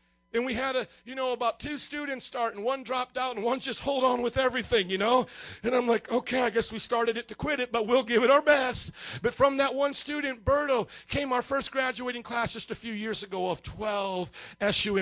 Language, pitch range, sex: English, 185-245 Hz, male